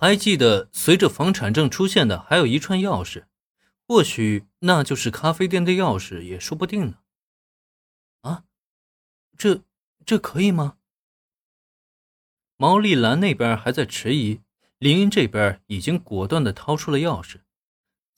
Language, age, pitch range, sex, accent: Chinese, 20-39, 105-170 Hz, male, native